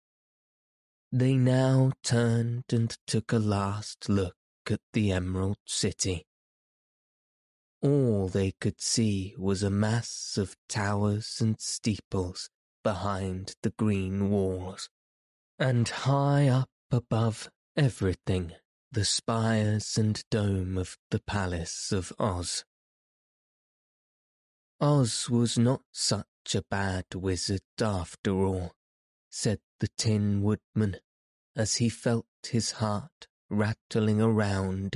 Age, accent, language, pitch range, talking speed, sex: 20-39, British, English, 95-115 Hz, 105 wpm, male